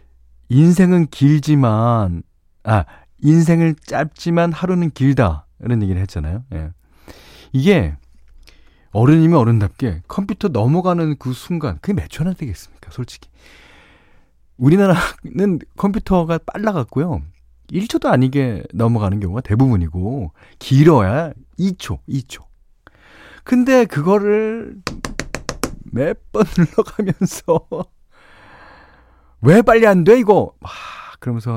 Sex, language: male, Korean